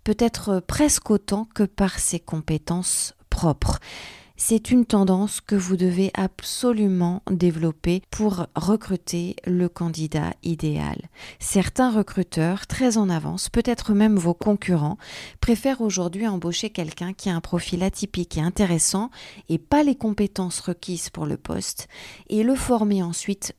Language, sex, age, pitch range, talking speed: French, female, 40-59, 165-215 Hz, 135 wpm